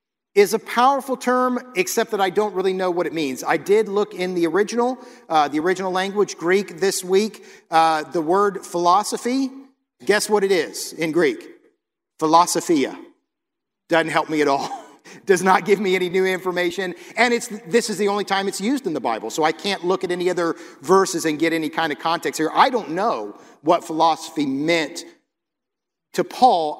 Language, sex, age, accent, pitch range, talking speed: English, male, 50-69, American, 150-200 Hz, 190 wpm